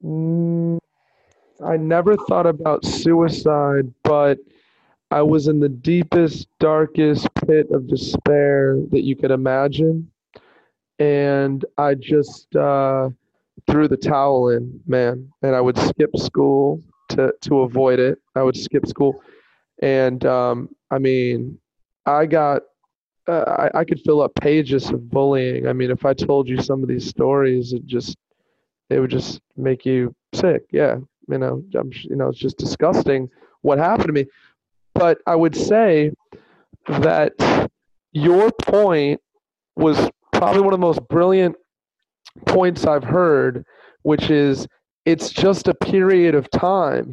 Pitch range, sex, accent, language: 135-175 Hz, male, American, English